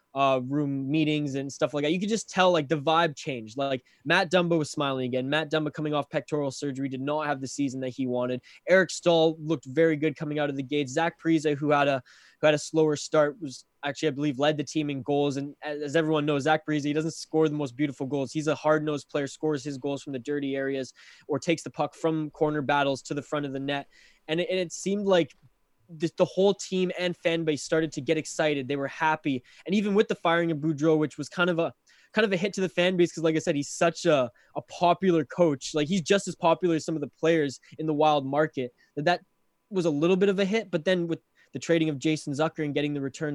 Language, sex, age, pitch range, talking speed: English, male, 20-39, 145-165 Hz, 255 wpm